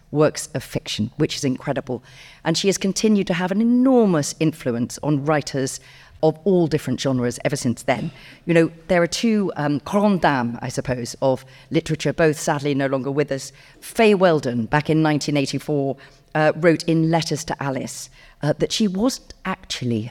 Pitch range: 135-175 Hz